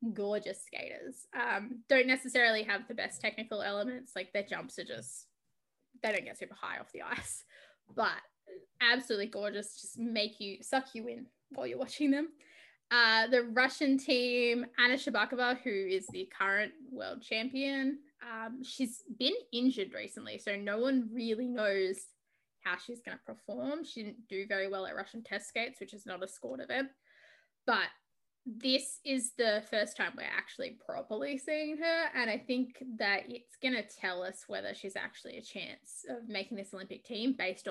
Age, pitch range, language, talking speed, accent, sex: 10-29, 210-260 Hz, English, 170 wpm, Australian, female